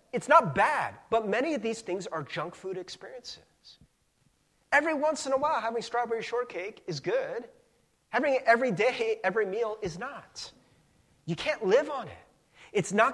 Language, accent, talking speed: English, American, 170 wpm